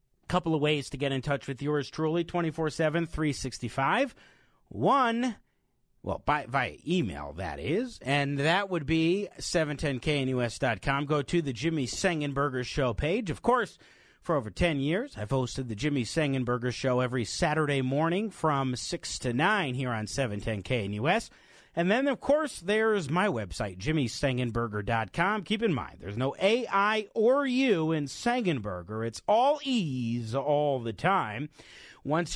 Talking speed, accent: 145 wpm, American